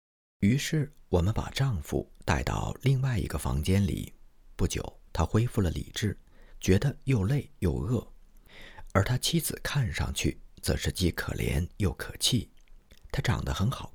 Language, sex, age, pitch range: Chinese, male, 50-69, 85-120 Hz